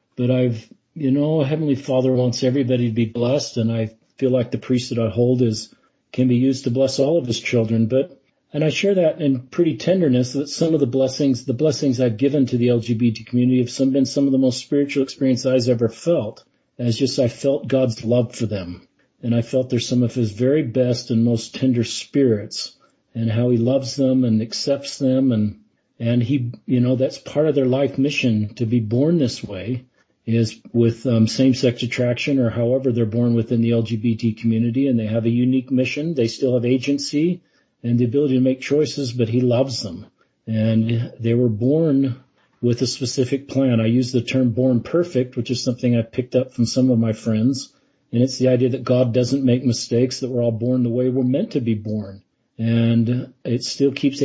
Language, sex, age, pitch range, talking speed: English, male, 40-59, 120-135 Hz, 210 wpm